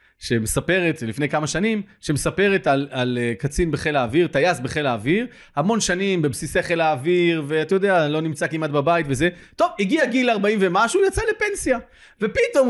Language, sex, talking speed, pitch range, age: Hebrew, male, 160 wpm, 140-195 Hz, 30-49